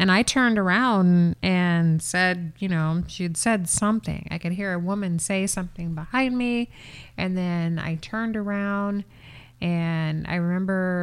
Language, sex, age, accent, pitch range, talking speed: English, female, 30-49, American, 165-200 Hz, 150 wpm